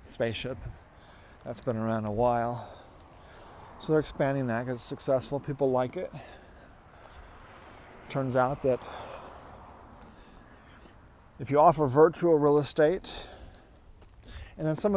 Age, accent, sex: 40-59, American, male